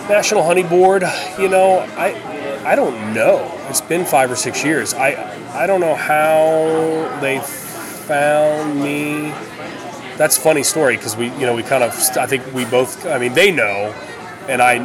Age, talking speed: 30-49, 175 wpm